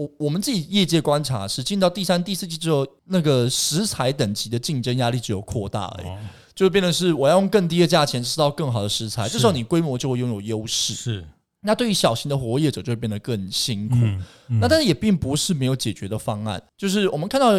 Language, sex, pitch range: Chinese, male, 115-170 Hz